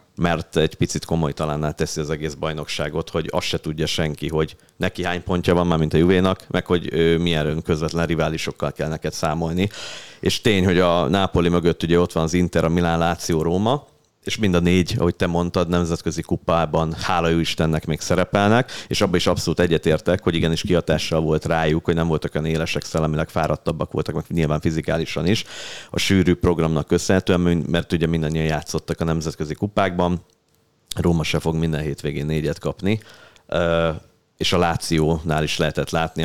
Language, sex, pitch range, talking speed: Hungarian, male, 80-90 Hz, 175 wpm